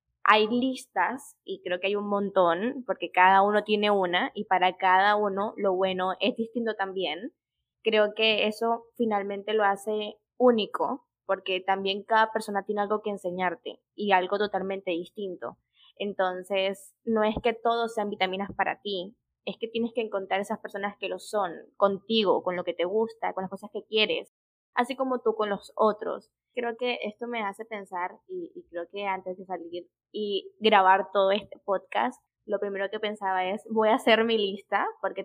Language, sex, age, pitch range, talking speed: Spanish, female, 10-29, 195-225 Hz, 180 wpm